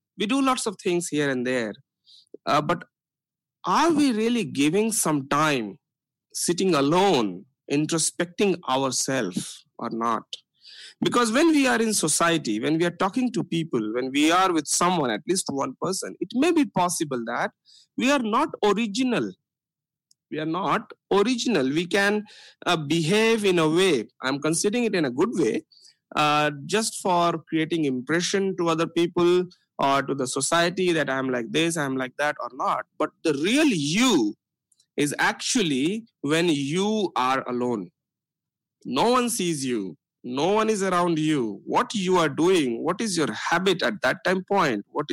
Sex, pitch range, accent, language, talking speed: male, 150-210 Hz, Indian, English, 165 wpm